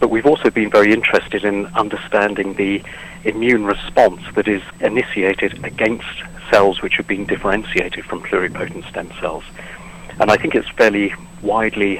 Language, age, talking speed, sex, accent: English, 50-69, 150 wpm, male, British